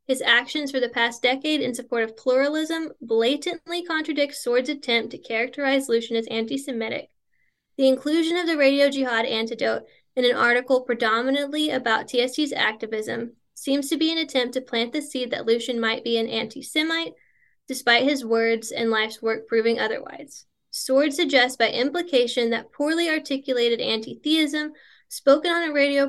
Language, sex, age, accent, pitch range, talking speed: English, female, 10-29, American, 235-285 Hz, 155 wpm